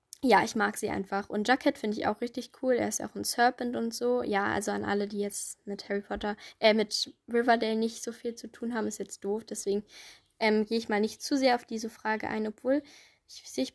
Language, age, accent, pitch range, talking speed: German, 10-29, German, 210-265 Hz, 235 wpm